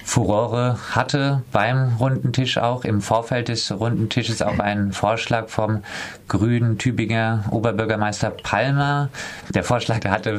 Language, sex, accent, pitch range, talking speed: German, male, German, 100-120 Hz, 110 wpm